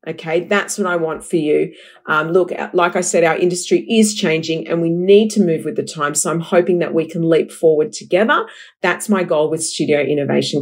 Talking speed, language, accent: 220 wpm, English, Australian